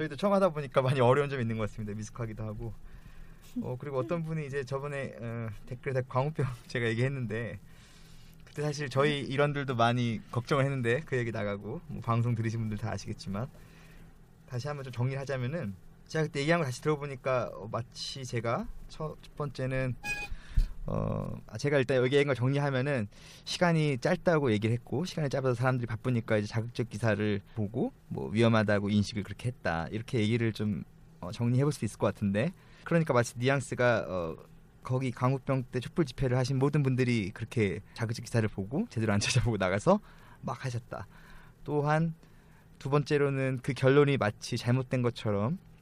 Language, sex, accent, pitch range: Korean, male, native, 115-145 Hz